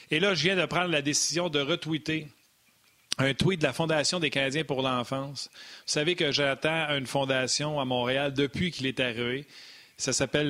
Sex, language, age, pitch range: male, French, 40-59, 125-150 Hz